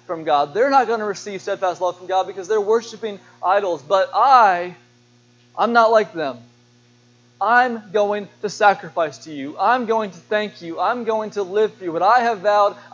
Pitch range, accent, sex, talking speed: 120-205 Hz, American, male, 195 wpm